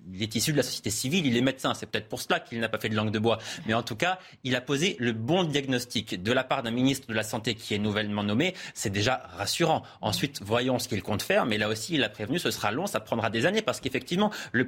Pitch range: 115-150 Hz